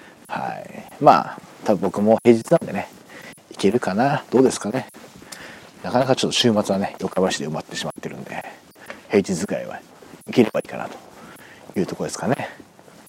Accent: native